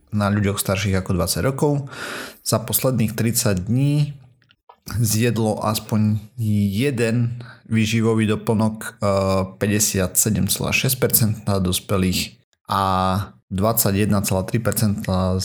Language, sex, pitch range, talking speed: Slovak, male, 95-120 Hz, 80 wpm